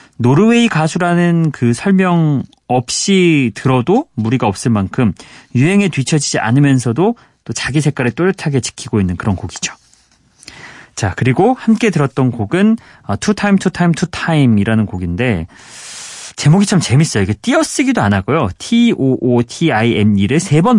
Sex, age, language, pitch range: male, 30-49, Korean, 110-175 Hz